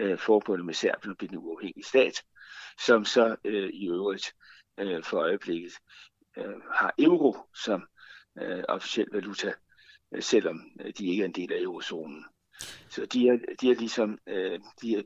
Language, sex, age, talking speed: Danish, male, 60-79, 130 wpm